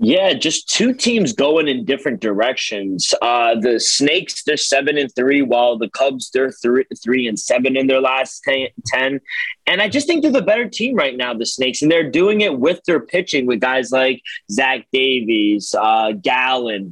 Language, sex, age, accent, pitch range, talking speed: English, male, 20-39, American, 130-210 Hz, 190 wpm